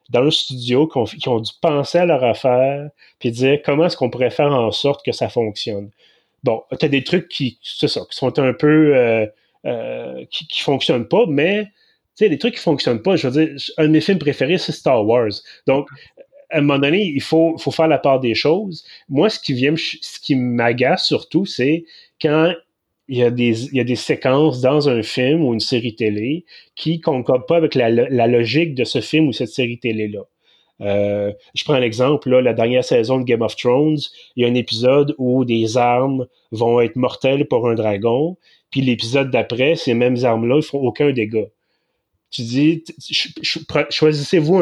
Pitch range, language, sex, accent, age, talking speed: 120-160 Hz, French, male, Canadian, 30-49, 200 wpm